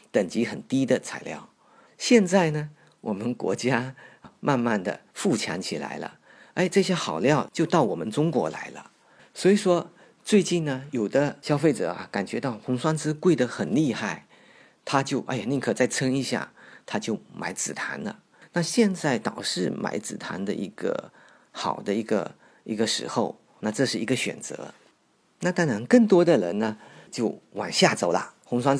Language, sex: Chinese, male